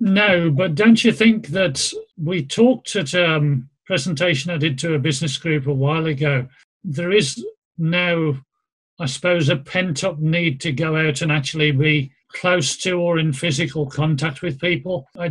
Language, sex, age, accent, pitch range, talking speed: English, male, 40-59, British, 145-165 Hz, 175 wpm